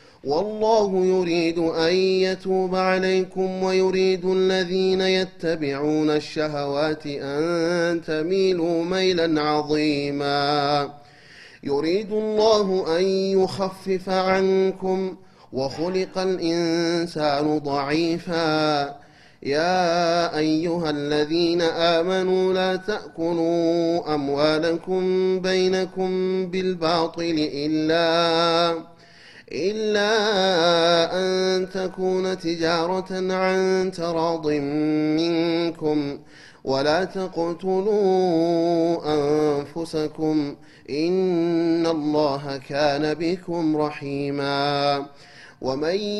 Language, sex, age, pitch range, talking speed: Amharic, male, 30-49, 150-185 Hz, 60 wpm